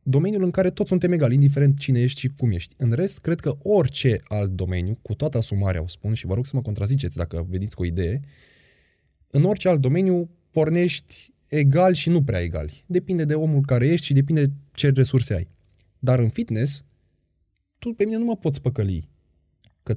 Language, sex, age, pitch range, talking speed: Romanian, male, 20-39, 100-150 Hz, 200 wpm